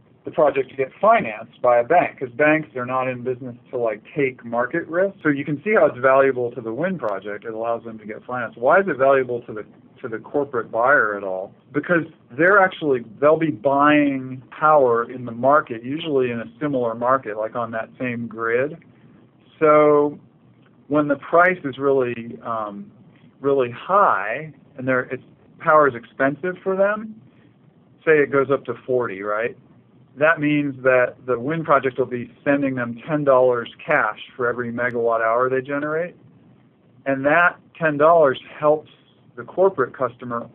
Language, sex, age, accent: English, male, 50-69, American